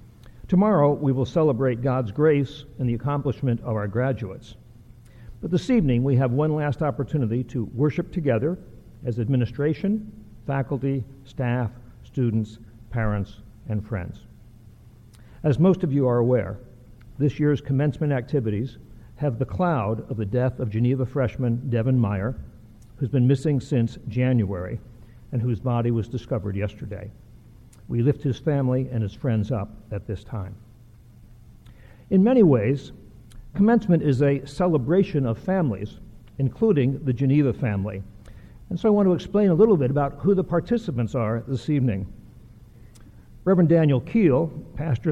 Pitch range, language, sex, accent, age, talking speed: 115-150 Hz, English, male, American, 60-79, 140 wpm